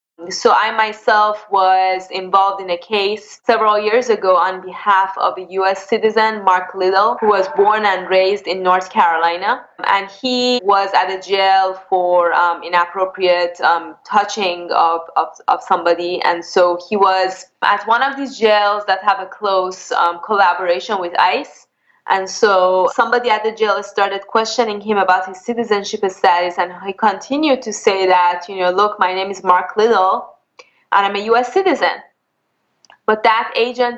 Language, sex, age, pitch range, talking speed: English, female, 20-39, 185-230 Hz, 165 wpm